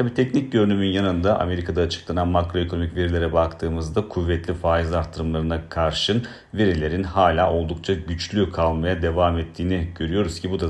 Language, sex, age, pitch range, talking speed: Turkish, male, 40-59, 80-95 Hz, 135 wpm